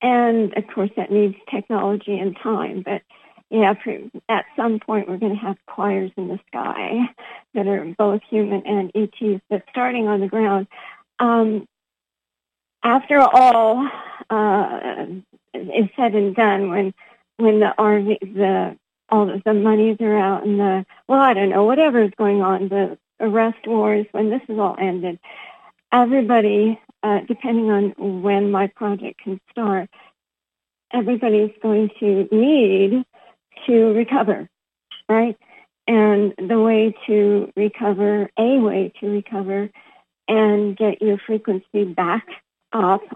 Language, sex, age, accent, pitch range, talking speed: English, female, 50-69, American, 200-225 Hz, 140 wpm